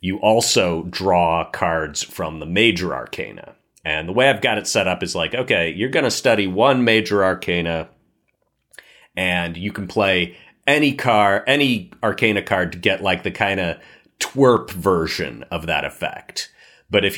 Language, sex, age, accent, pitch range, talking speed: English, male, 30-49, American, 85-115 Hz, 170 wpm